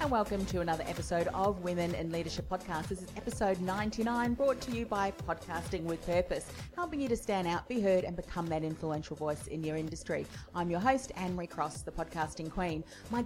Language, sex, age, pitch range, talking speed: English, female, 40-59, 175-220 Hz, 210 wpm